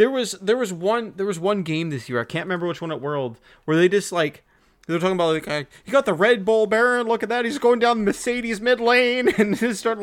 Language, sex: English, male